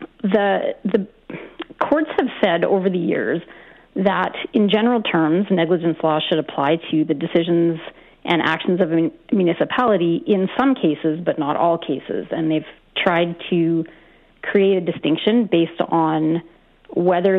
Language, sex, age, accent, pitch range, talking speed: English, female, 40-59, American, 165-200 Hz, 140 wpm